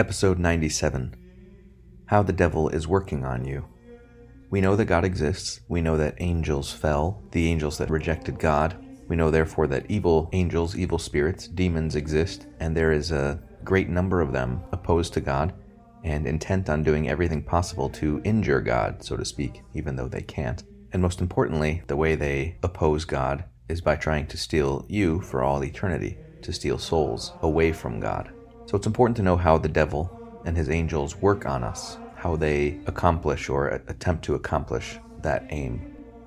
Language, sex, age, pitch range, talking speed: English, male, 30-49, 75-90 Hz, 175 wpm